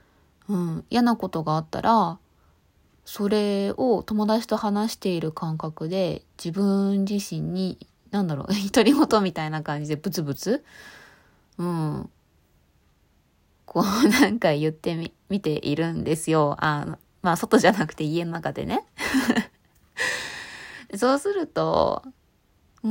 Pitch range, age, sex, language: 160-220 Hz, 20-39, female, Japanese